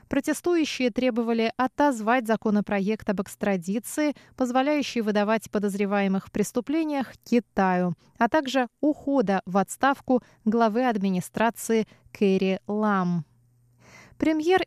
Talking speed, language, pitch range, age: 90 wpm, Russian, 195-260 Hz, 20-39